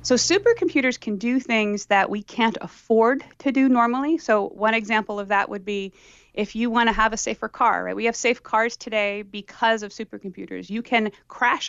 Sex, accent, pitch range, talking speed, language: female, American, 200-235 Hz, 200 wpm, English